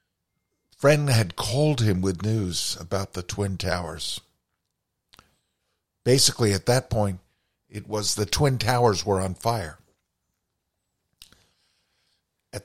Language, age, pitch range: English, 50-69, 85-105 Hz